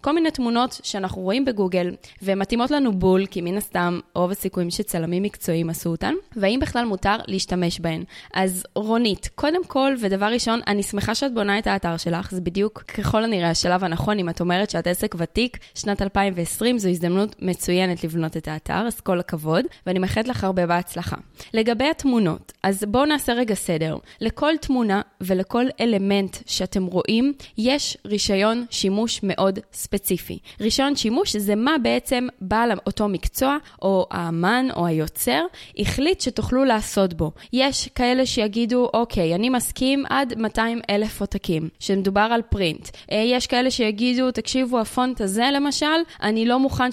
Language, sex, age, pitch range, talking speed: Hebrew, female, 20-39, 185-245 Hz, 155 wpm